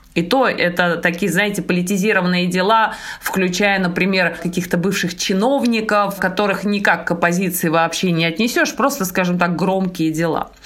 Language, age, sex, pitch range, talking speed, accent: Russian, 20-39, female, 180-230 Hz, 135 wpm, native